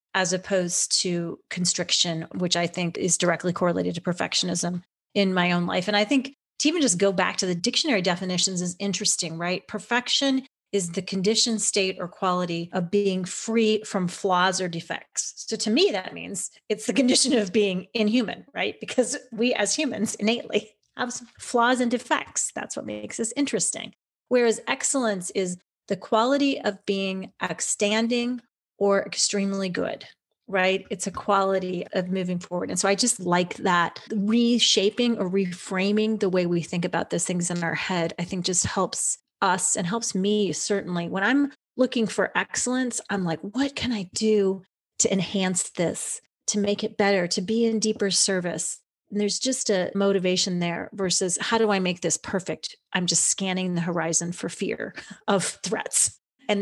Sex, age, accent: female, 30-49, American